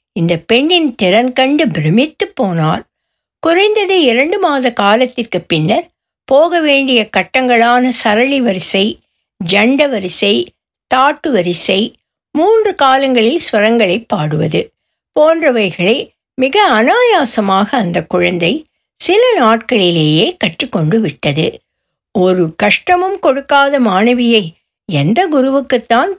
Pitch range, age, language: 200-280 Hz, 60-79, Tamil